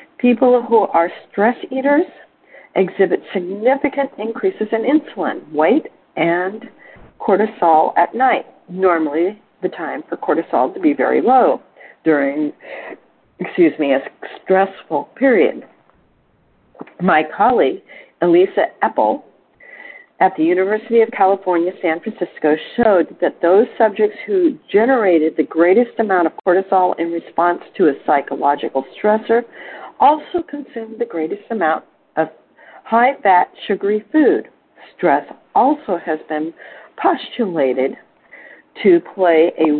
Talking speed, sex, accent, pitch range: 115 wpm, female, American, 170-260 Hz